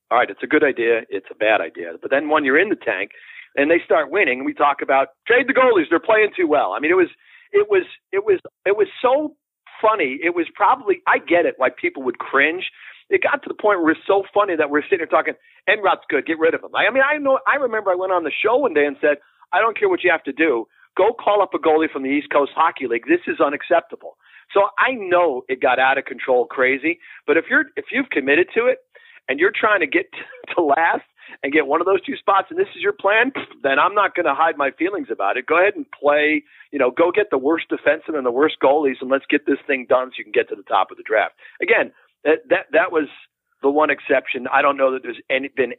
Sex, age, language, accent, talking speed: male, 50-69, English, American, 265 wpm